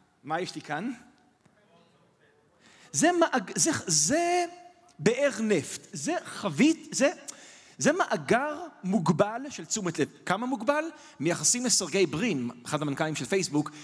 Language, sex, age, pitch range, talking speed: Hebrew, male, 40-59, 160-240 Hz, 105 wpm